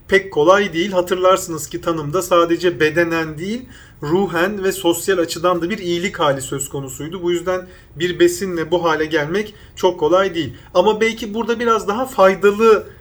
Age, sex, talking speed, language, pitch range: 40-59, male, 160 wpm, Turkish, 170-200 Hz